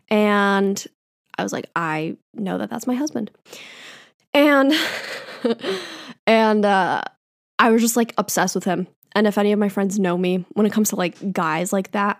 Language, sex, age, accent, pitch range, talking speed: English, female, 10-29, American, 185-230 Hz, 175 wpm